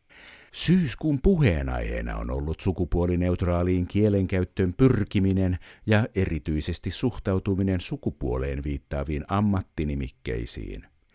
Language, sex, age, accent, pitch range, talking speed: Finnish, male, 50-69, native, 80-100 Hz, 70 wpm